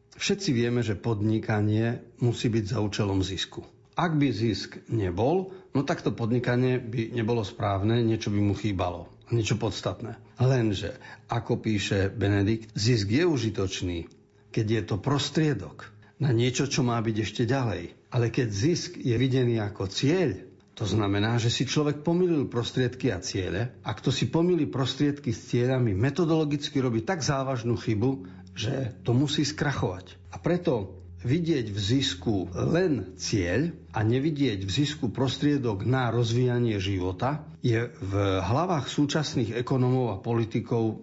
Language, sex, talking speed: Slovak, male, 140 wpm